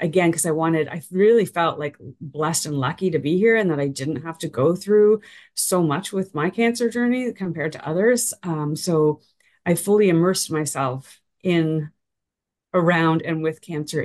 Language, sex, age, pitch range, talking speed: English, female, 30-49, 155-185 Hz, 180 wpm